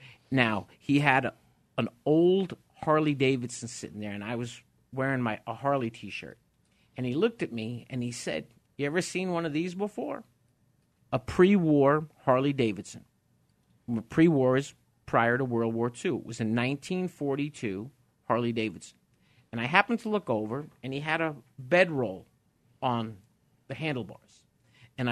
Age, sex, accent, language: 50-69, male, American, English